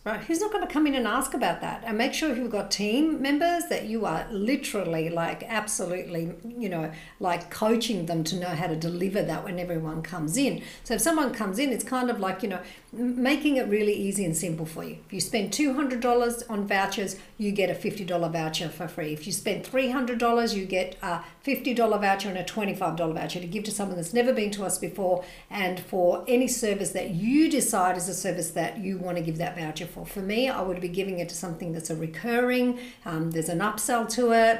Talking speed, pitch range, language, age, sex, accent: 225 wpm, 180-245 Hz, English, 50-69, female, Australian